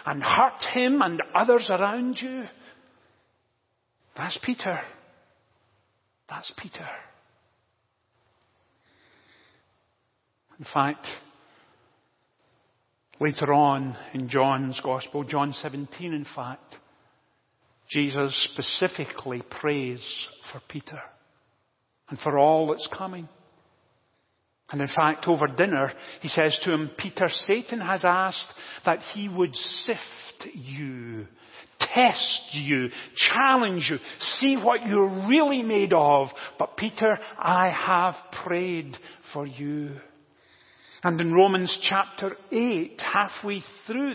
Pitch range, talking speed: 145-230 Hz, 100 wpm